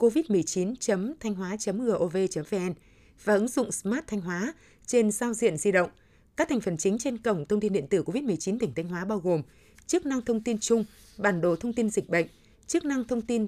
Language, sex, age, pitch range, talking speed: Vietnamese, female, 20-39, 190-235 Hz, 190 wpm